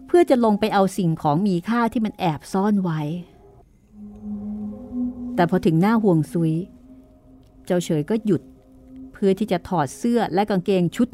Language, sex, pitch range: Thai, female, 175-260 Hz